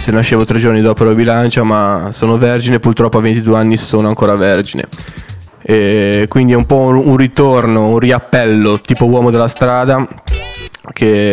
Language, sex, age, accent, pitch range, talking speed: Italian, male, 10-29, native, 115-130 Hz, 160 wpm